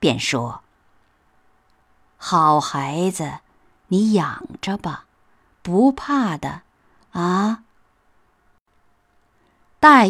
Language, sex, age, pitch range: Chinese, female, 50-69, 140-210 Hz